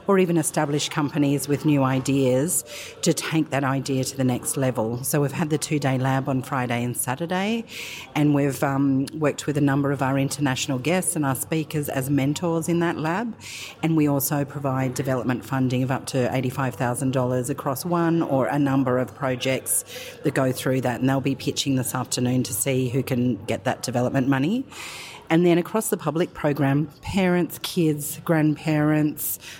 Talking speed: 180 wpm